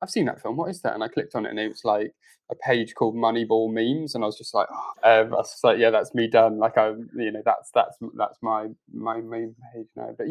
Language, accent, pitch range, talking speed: English, British, 110-115 Hz, 280 wpm